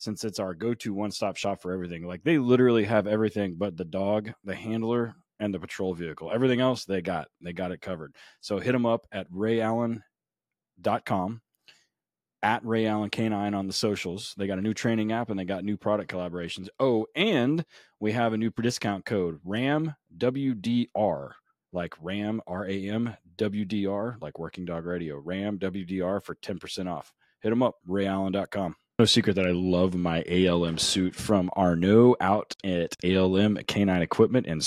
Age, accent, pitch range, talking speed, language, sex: 30-49, American, 90-110 Hz, 165 wpm, English, male